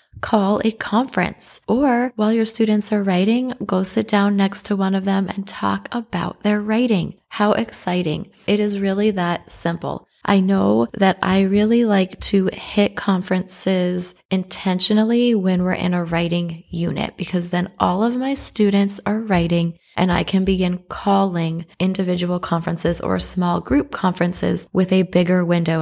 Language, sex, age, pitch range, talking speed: English, female, 20-39, 170-205 Hz, 160 wpm